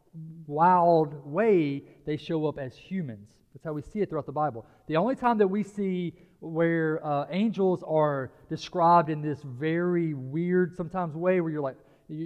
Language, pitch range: English, 135-165 Hz